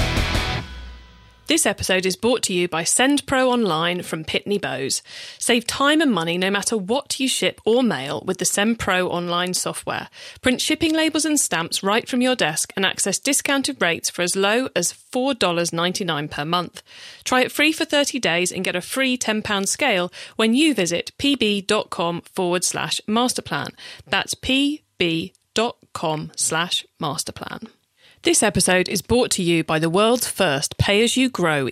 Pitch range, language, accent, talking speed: 170-245 Hz, English, British, 155 wpm